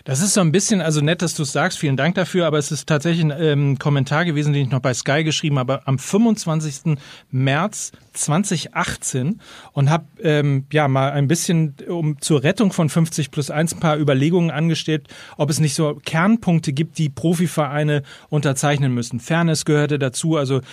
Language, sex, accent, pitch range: German, male, German, 140-165 Hz